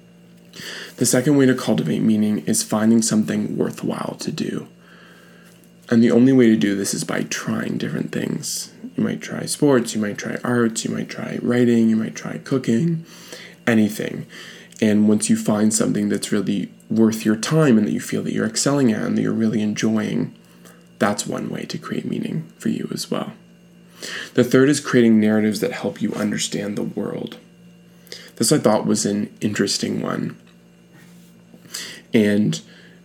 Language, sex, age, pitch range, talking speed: English, male, 20-39, 105-180 Hz, 170 wpm